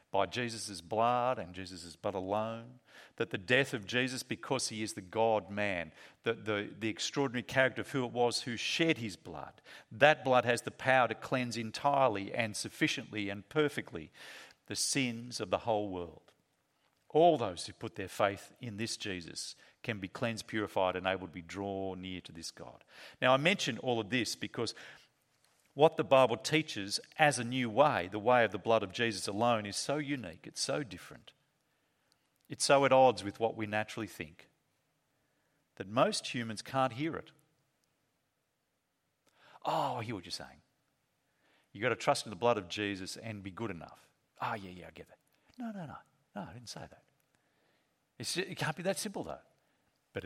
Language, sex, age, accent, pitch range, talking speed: English, male, 50-69, Australian, 100-130 Hz, 185 wpm